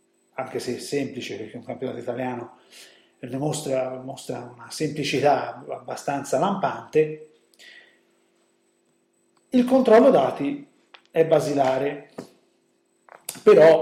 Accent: native